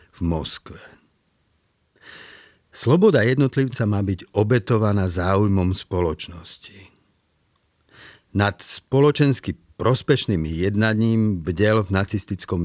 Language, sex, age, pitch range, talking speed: Slovak, male, 50-69, 90-110 Hz, 75 wpm